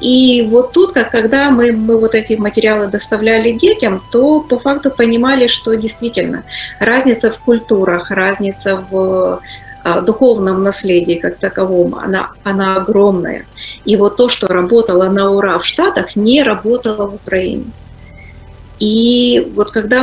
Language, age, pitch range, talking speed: Ukrainian, 30-49, 190-240 Hz, 140 wpm